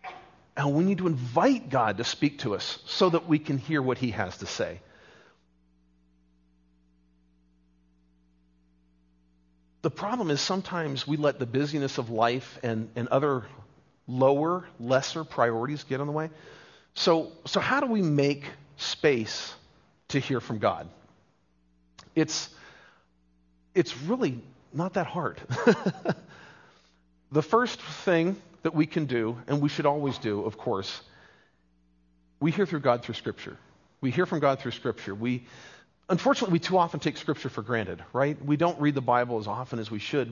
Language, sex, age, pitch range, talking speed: English, male, 40-59, 115-165 Hz, 155 wpm